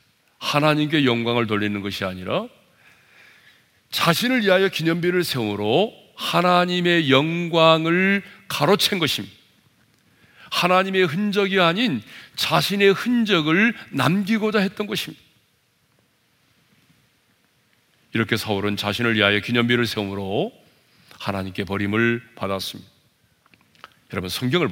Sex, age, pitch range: male, 40-59, 110-175 Hz